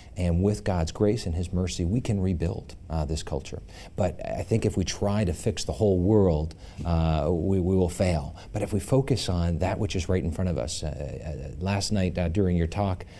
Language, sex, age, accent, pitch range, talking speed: English, male, 40-59, American, 85-100 Hz, 225 wpm